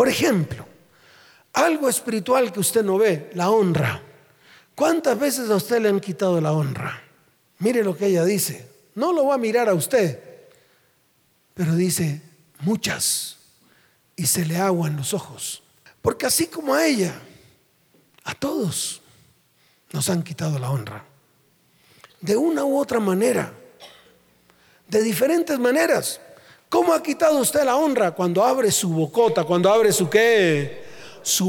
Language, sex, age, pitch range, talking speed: Spanish, male, 40-59, 175-260 Hz, 145 wpm